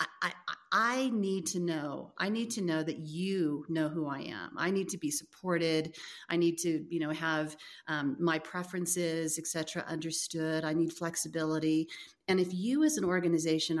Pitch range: 160-185 Hz